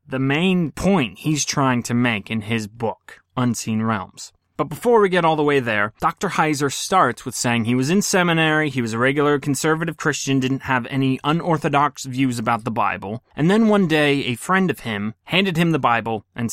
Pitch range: 120-160 Hz